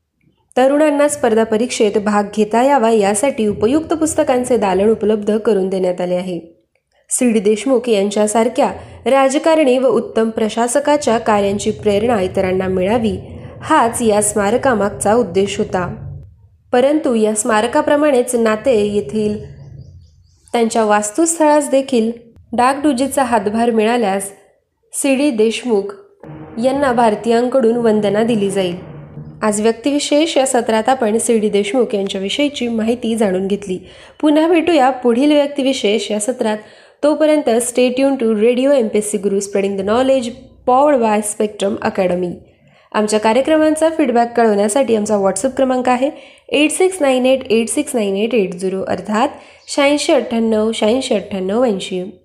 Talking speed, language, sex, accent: 110 wpm, Marathi, female, native